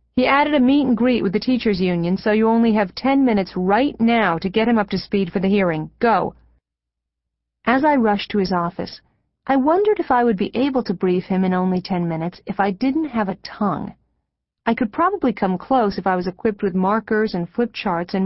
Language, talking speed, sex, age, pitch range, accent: English, 220 wpm, female, 40-59, 185-235 Hz, American